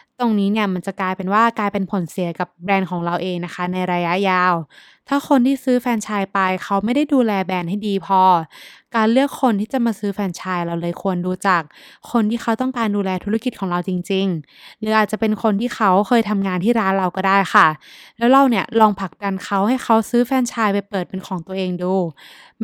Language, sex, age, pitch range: Thai, female, 20-39, 185-230 Hz